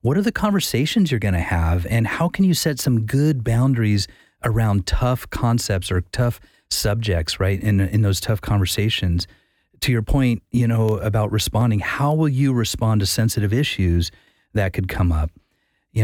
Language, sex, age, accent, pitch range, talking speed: English, male, 30-49, American, 100-130 Hz, 175 wpm